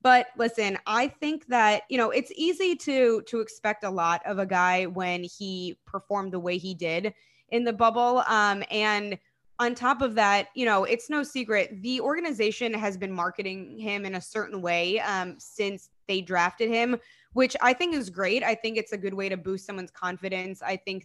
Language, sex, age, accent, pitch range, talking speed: English, female, 20-39, American, 190-235 Hz, 200 wpm